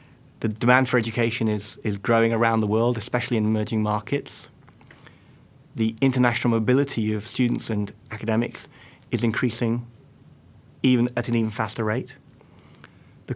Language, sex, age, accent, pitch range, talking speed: English, male, 30-49, British, 110-130 Hz, 135 wpm